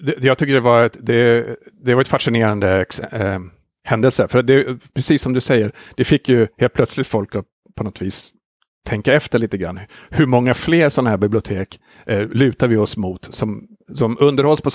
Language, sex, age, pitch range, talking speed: Swedish, male, 50-69, 105-130 Hz, 165 wpm